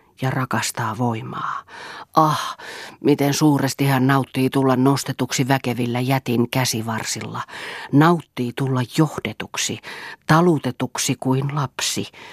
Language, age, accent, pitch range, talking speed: Finnish, 40-59, native, 120-150 Hz, 90 wpm